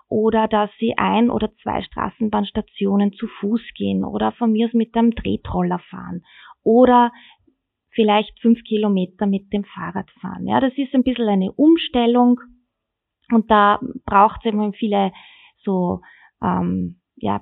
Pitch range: 200-235 Hz